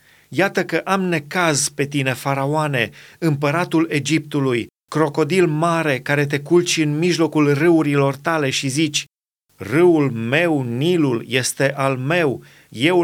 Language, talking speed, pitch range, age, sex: Romanian, 125 wpm, 140-170 Hz, 30-49, male